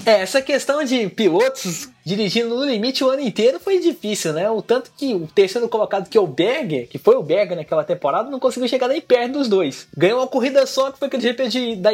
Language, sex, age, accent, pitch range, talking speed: Portuguese, male, 20-39, Brazilian, 205-275 Hz, 235 wpm